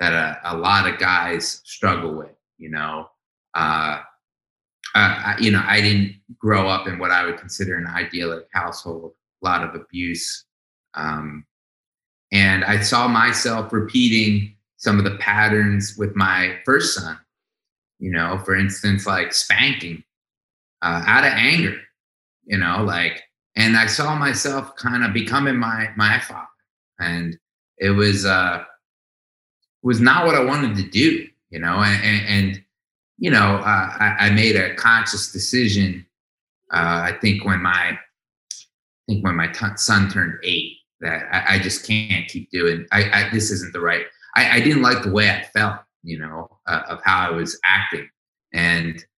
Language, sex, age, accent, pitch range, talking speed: English, male, 30-49, American, 85-110 Hz, 160 wpm